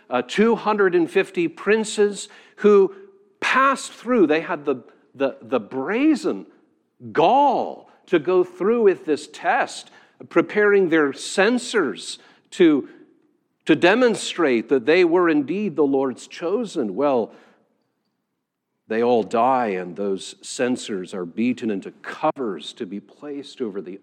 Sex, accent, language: male, American, English